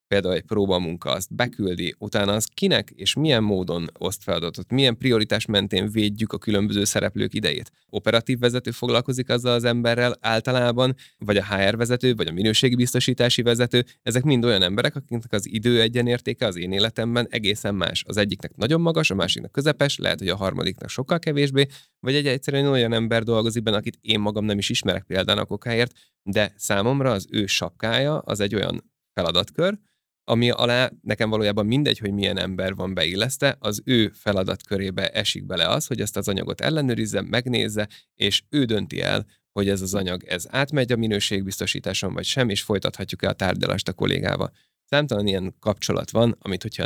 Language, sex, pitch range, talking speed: Hungarian, male, 100-125 Hz, 170 wpm